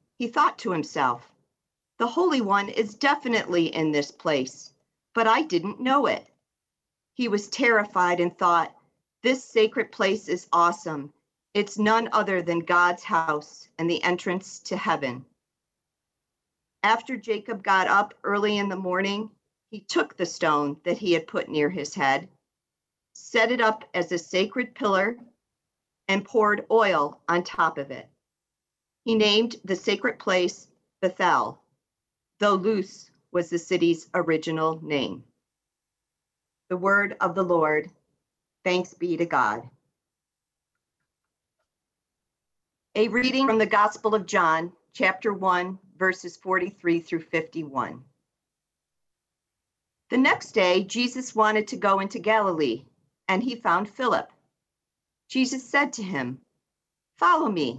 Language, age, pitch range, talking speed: English, 50-69, 170-220 Hz, 130 wpm